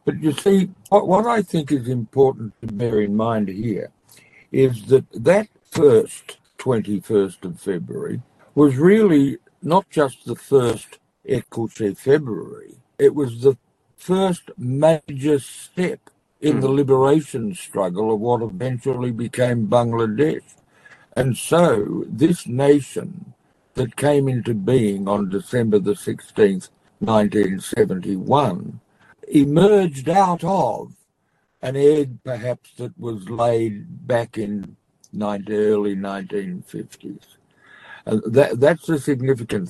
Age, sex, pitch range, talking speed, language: 60-79, male, 115-155 Hz, 115 wpm, Bengali